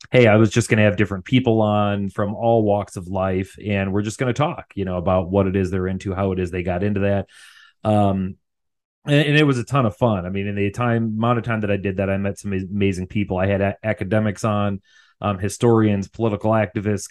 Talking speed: 250 wpm